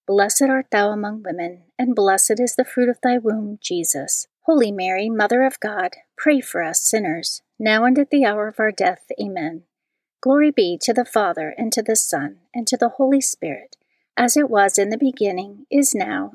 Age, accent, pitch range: 40-59, American, 190-250 Hz